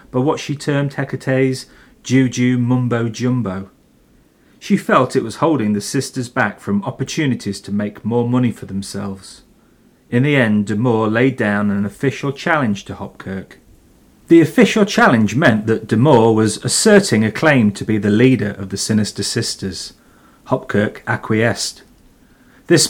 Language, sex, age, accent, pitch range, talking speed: English, male, 40-59, British, 105-145 Hz, 145 wpm